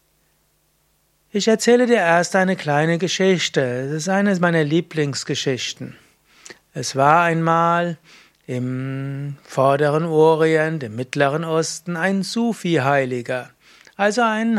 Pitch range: 145-185 Hz